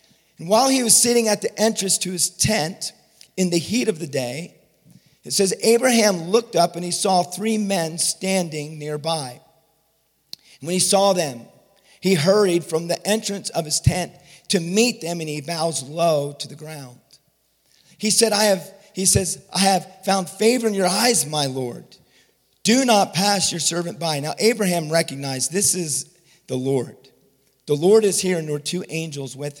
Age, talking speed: 40-59, 180 wpm